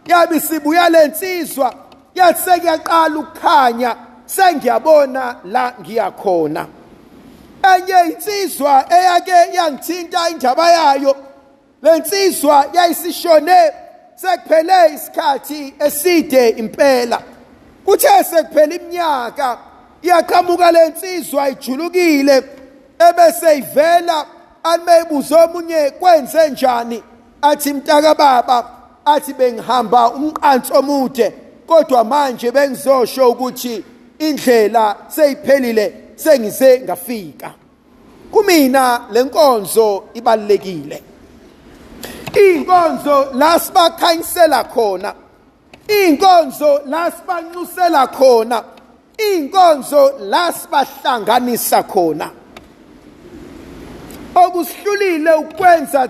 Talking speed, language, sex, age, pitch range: 75 wpm, English, male, 50-69, 255-340 Hz